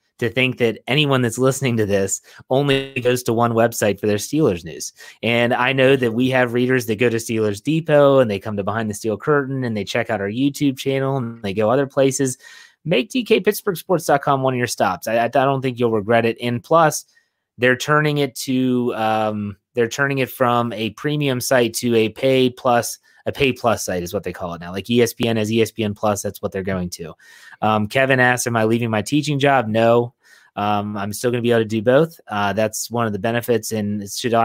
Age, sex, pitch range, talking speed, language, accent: 30-49, male, 105-125 Hz, 220 wpm, English, American